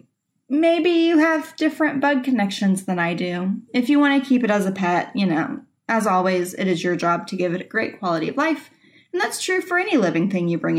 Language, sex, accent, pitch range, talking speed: English, female, American, 185-270 Hz, 240 wpm